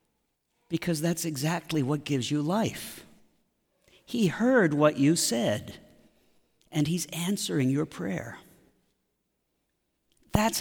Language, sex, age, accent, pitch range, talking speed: English, male, 50-69, American, 140-175 Hz, 100 wpm